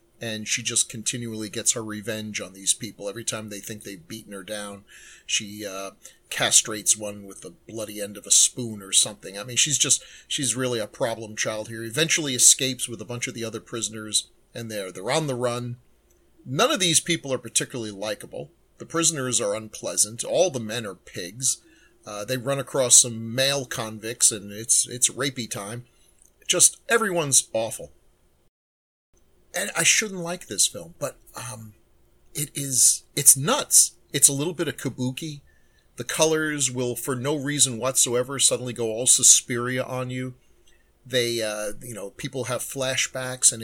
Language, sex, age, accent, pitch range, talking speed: English, male, 40-59, American, 110-135 Hz, 175 wpm